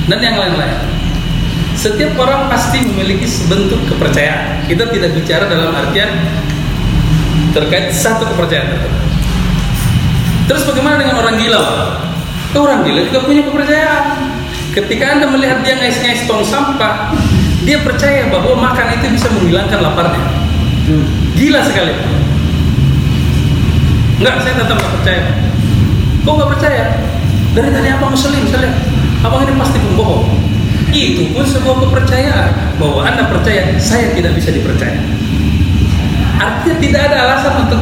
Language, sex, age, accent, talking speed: Indonesian, male, 40-59, native, 120 wpm